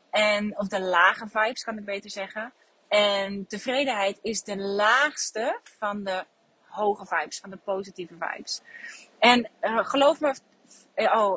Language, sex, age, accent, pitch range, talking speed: Dutch, female, 30-49, Dutch, 185-225 Hz, 145 wpm